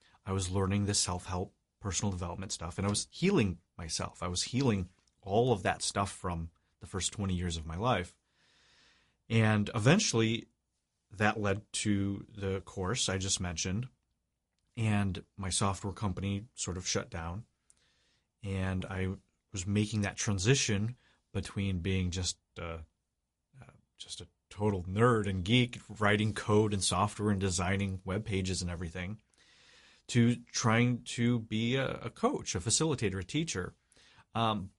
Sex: male